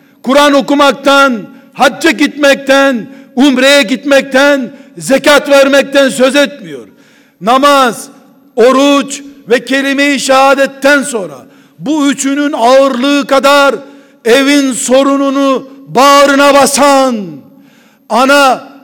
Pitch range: 220-275 Hz